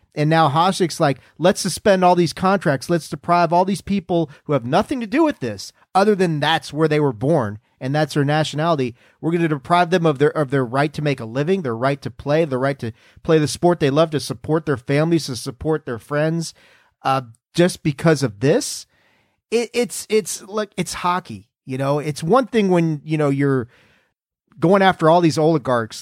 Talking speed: 210 wpm